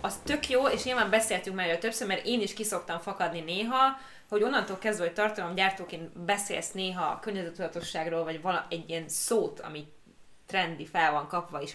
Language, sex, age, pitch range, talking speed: Hungarian, female, 20-39, 165-210 Hz, 180 wpm